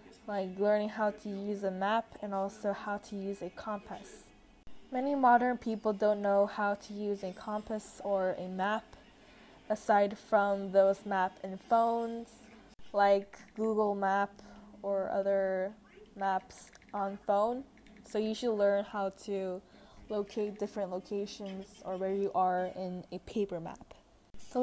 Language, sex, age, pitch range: Korean, female, 10-29, 200-235 Hz